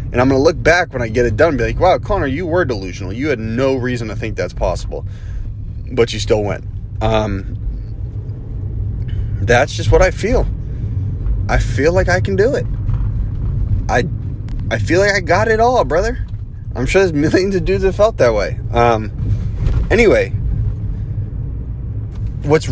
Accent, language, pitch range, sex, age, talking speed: American, English, 100-115 Hz, male, 30-49, 175 wpm